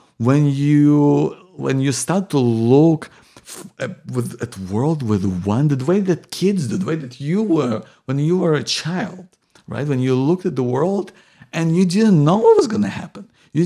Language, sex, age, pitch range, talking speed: English, male, 50-69, 130-180 Hz, 190 wpm